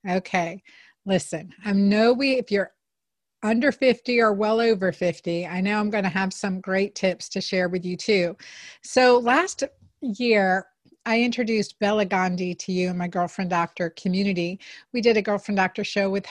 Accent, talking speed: American, 175 wpm